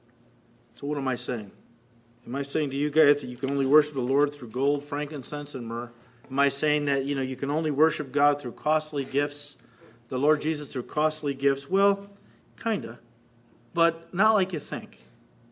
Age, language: 50-69, English